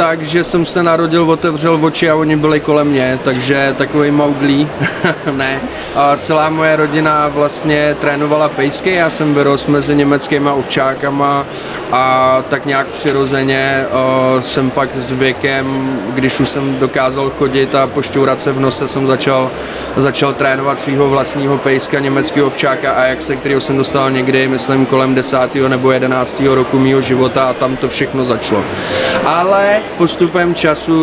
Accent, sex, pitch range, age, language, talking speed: native, male, 135-150 Hz, 20-39, Czech, 150 wpm